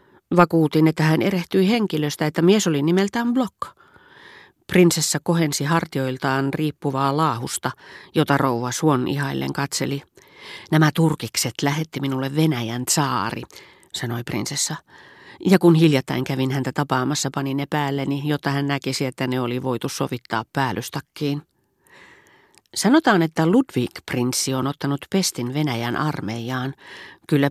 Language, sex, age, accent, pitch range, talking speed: Finnish, female, 40-59, native, 125-160 Hz, 120 wpm